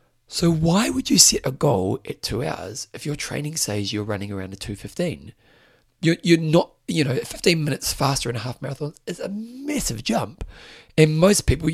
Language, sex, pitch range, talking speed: English, male, 115-165 Hz, 195 wpm